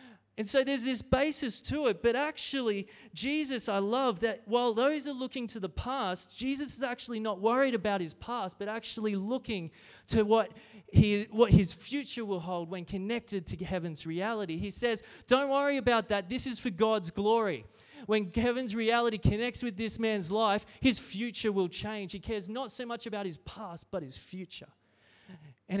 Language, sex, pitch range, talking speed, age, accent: English, male, 195-245 Hz, 185 wpm, 20-39, Australian